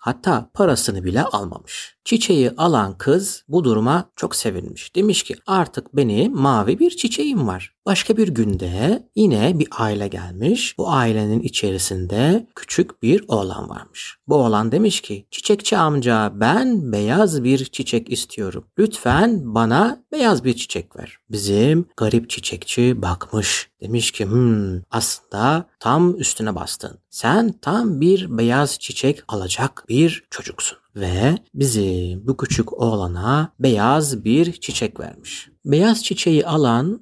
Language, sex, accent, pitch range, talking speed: Turkish, male, native, 110-170 Hz, 130 wpm